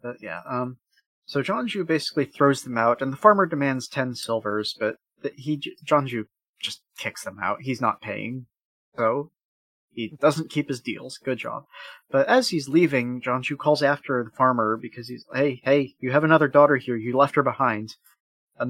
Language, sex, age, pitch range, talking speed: English, male, 30-49, 125-155 Hz, 195 wpm